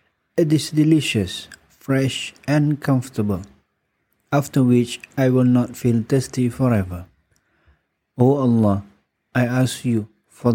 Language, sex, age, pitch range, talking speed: English, male, 50-69, 105-120 Hz, 115 wpm